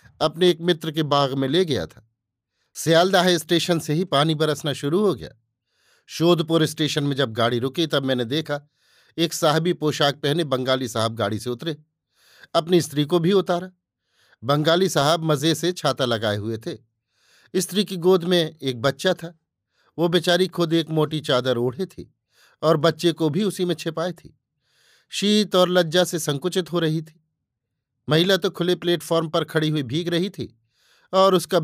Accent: native